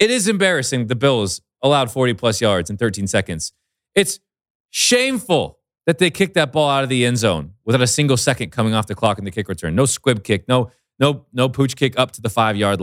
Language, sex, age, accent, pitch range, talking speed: English, male, 30-49, American, 90-130 Hz, 220 wpm